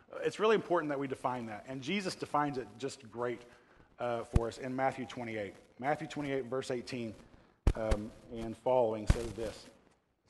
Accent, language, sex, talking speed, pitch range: American, English, male, 170 wpm, 130-170 Hz